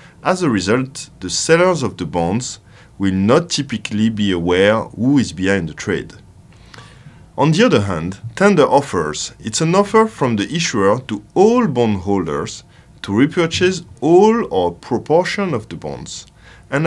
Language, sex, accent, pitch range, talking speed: English, male, French, 100-150 Hz, 155 wpm